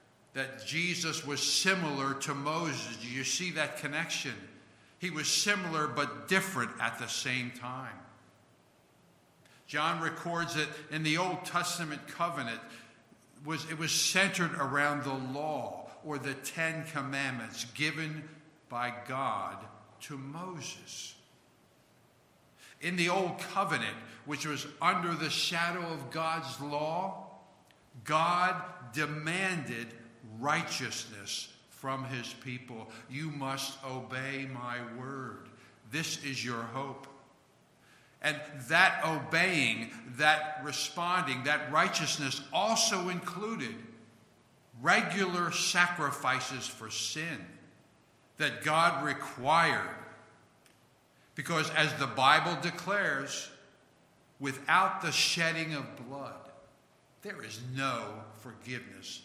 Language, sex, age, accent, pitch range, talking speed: English, male, 60-79, American, 130-165 Hz, 100 wpm